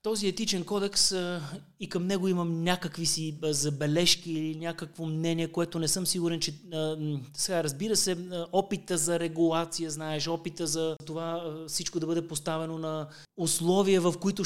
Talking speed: 150 wpm